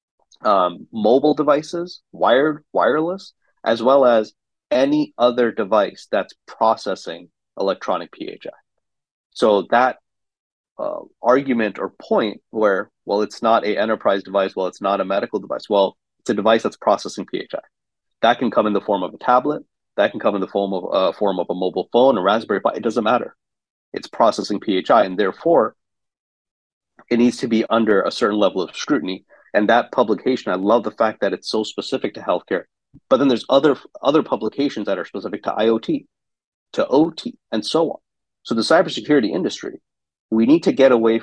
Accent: American